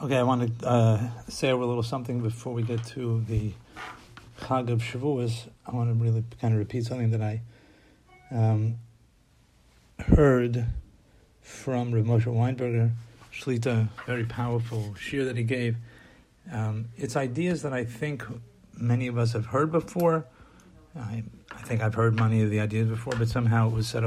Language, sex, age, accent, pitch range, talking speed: English, male, 50-69, American, 115-125 Hz, 165 wpm